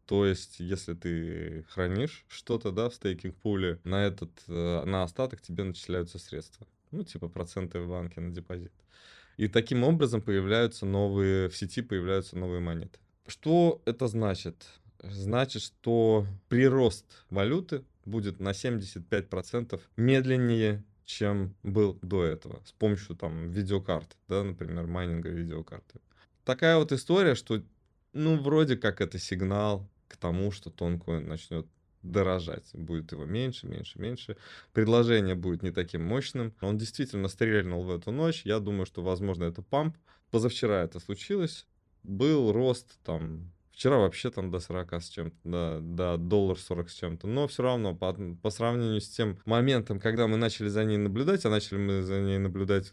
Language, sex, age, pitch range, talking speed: Russian, male, 20-39, 90-115 Hz, 150 wpm